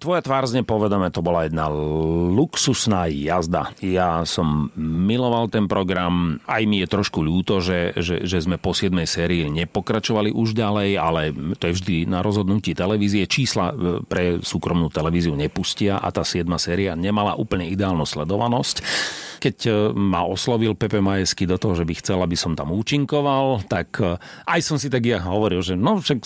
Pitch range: 85-110 Hz